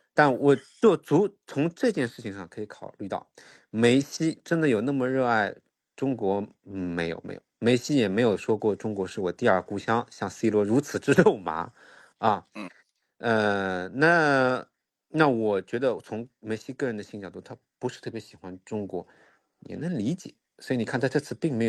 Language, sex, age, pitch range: Chinese, male, 50-69, 105-130 Hz